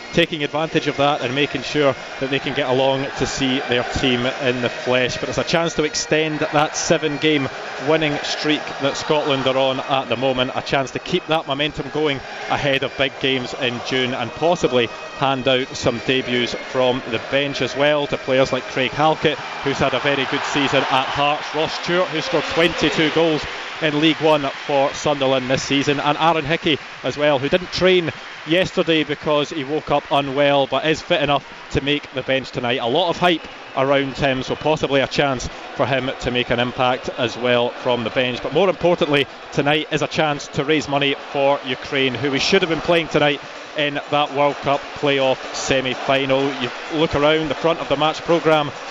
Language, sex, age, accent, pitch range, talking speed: English, male, 20-39, British, 135-155 Hz, 200 wpm